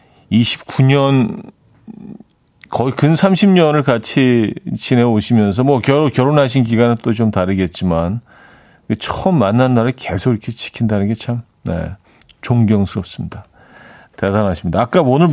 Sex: male